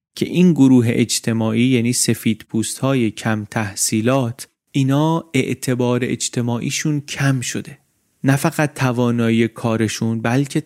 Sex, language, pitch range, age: male, Persian, 110-140 Hz, 30-49